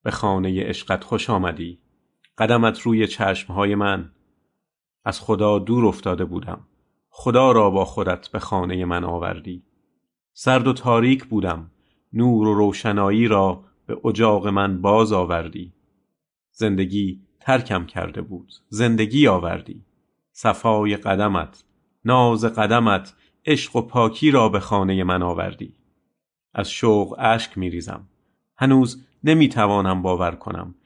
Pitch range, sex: 95-115 Hz, male